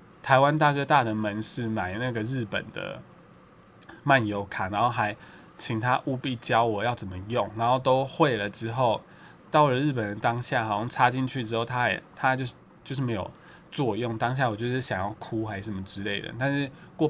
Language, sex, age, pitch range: Chinese, male, 20-39, 110-140 Hz